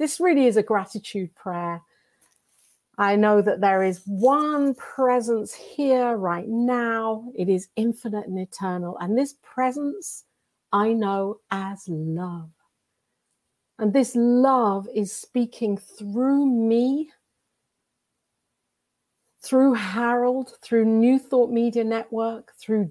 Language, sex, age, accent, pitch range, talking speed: English, female, 50-69, British, 205-255 Hz, 115 wpm